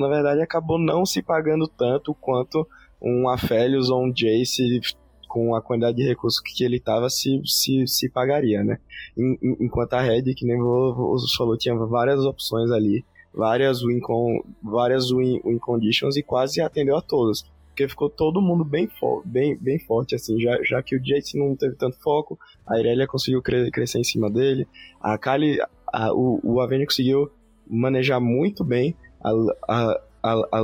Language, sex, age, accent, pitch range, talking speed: Portuguese, male, 20-39, Brazilian, 115-135 Hz, 160 wpm